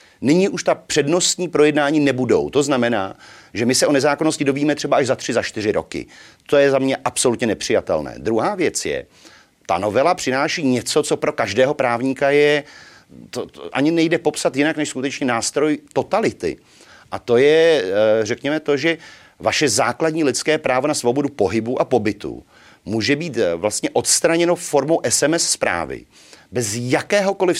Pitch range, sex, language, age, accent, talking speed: 120-155 Hz, male, Czech, 40-59, native, 160 wpm